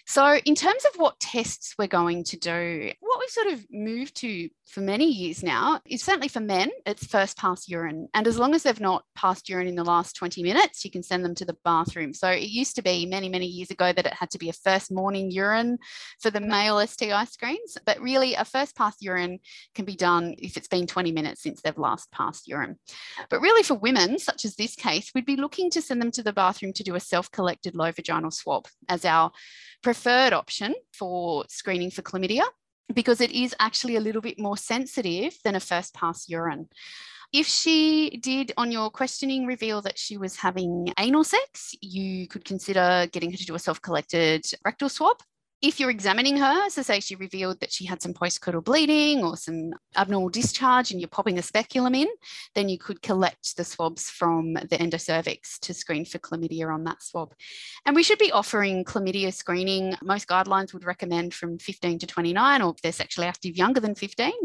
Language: English